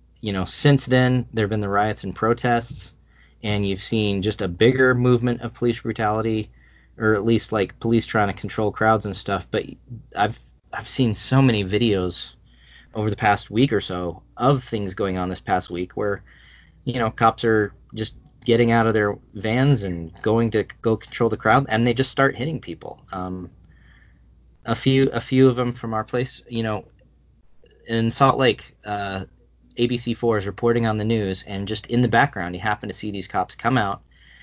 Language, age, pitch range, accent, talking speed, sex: English, 20-39, 100-120 Hz, American, 195 wpm, male